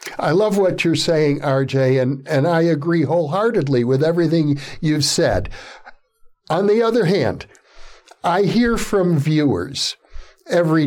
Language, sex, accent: English, male, American